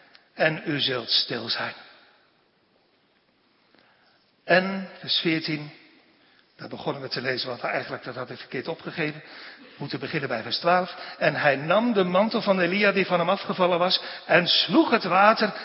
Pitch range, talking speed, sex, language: 150-210 Hz, 160 wpm, male, Dutch